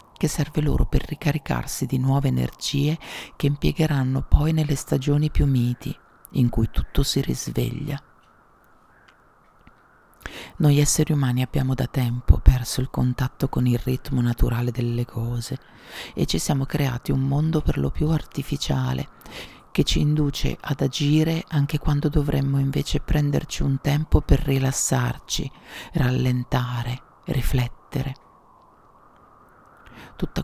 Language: Italian